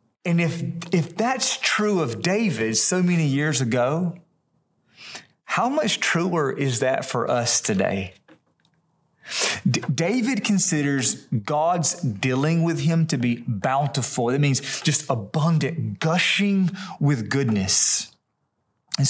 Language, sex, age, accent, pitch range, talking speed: English, male, 30-49, American, 135-170 Hz, 115 wpm